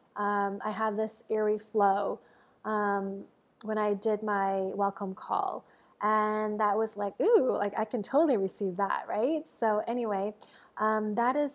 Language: English